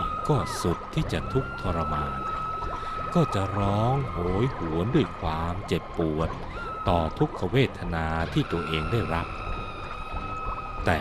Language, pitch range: Thai, 80-105 Hz